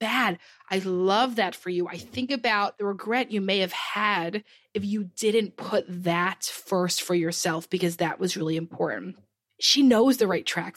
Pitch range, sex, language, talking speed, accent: 180-225 Hz, female, English, 185 wpm, American